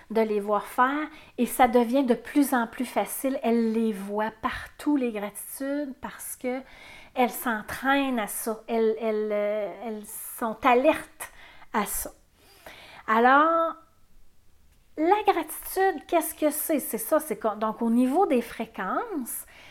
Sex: female